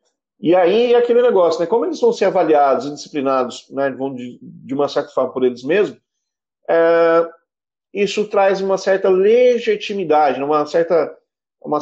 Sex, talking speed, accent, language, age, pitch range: male, 150 wpm, Brazilian, Portuguese, 40-59, 125-175 Hz